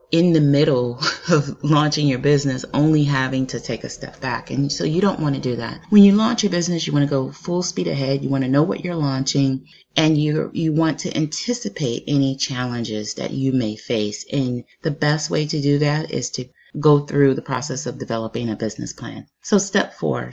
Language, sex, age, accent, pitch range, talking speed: English, female, 30-49, American, 125-150 Hz, 220 wpm